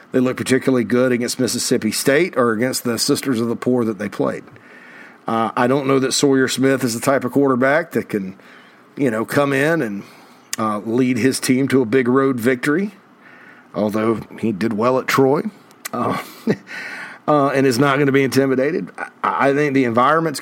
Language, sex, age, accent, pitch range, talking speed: English, male, 40-59, American, 115-140 Hz, 190 wpm